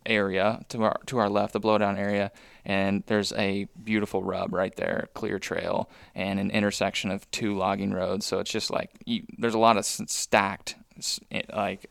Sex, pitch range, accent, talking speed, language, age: male, 100-110 Hz, American, 175 wpm, English, 20-39